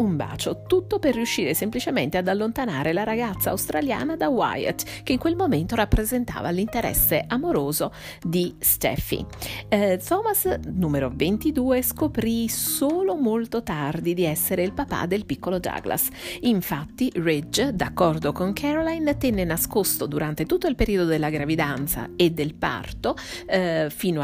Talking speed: 135 wpm